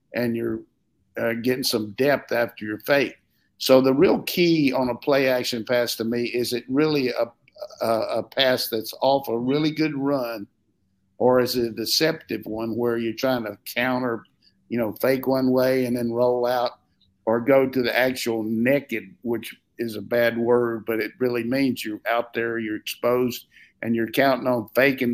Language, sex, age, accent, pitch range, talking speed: English, male, 50-69, American, 115-130 Hz, 185 wpm